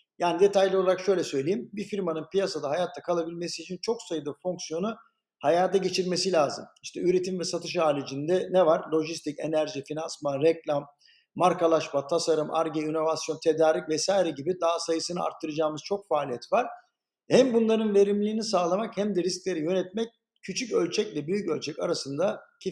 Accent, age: native, 50-69